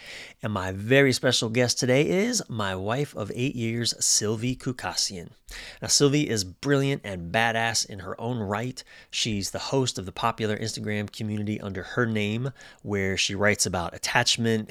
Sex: male